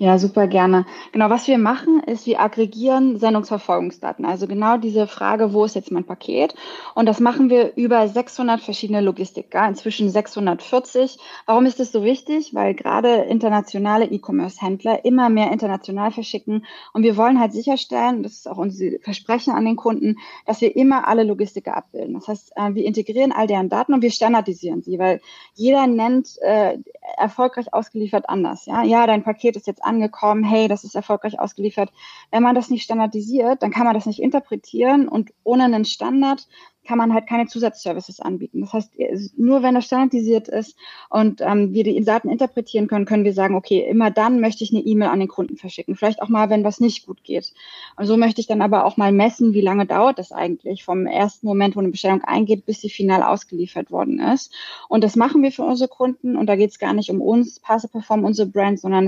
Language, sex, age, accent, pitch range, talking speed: German, female, 20-39, German, 200-235 Hz, 200 wpm